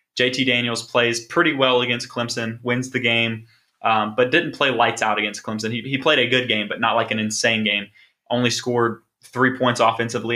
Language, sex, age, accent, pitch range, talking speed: English, male, 20-39, American, 115-130 Hz, 205 wpm